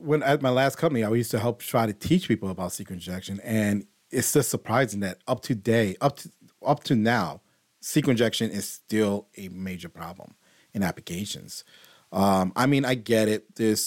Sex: male